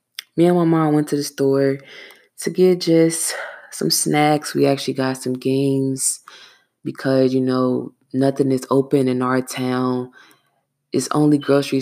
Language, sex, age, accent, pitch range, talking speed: English, female, 20-39, American, 130-145 Hz, 150 wpm